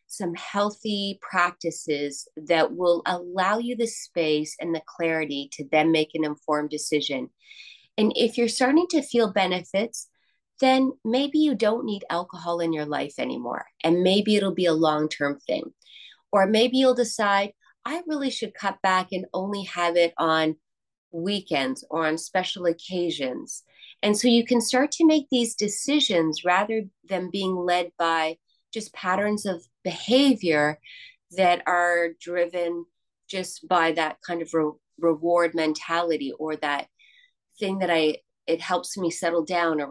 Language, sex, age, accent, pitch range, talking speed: English, female, 30-49, American, 165-225 Hz, 150 wpm